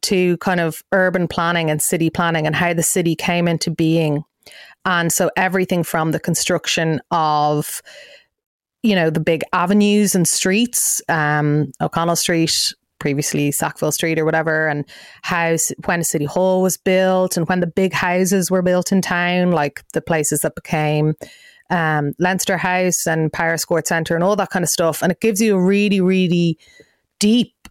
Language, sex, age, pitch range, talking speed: English, female, 30-49, 155-185 Hz, 170 wpm